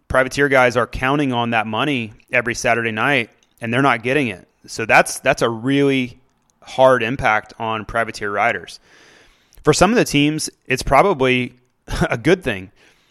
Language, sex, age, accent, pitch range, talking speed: English, male, 30-49, American, 120-145 Hz, 160 wpm